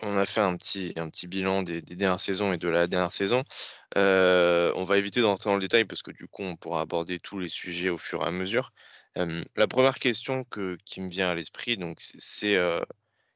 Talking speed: 240 wpm